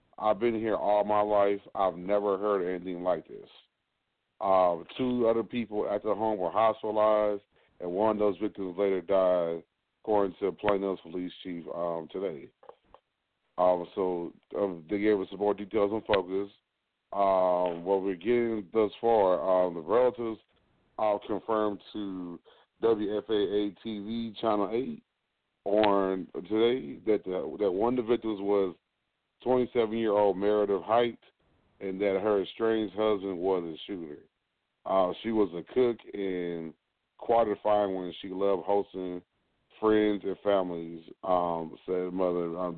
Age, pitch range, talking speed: 30-49, 90-110 Hz, 145 wpm